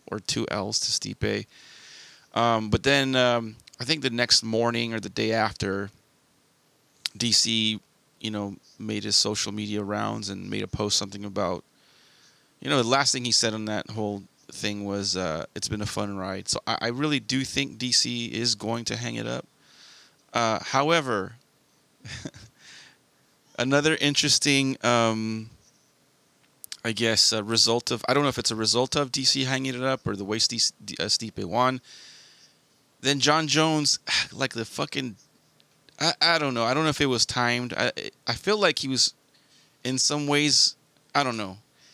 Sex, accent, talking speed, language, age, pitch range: male, American, 170 wpm, English, 30-49, 110-140 Hz